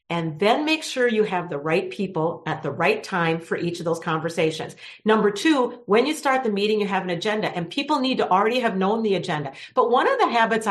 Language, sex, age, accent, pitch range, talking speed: English, female, 50-69, American, 190-250 Hz, 240 wpm